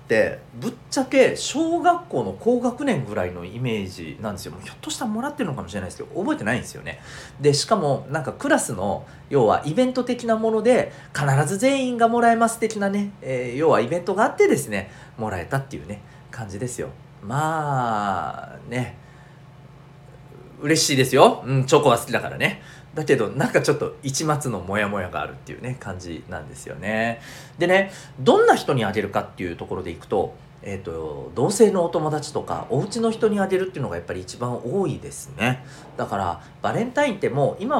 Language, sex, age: Japanese, male, 40-59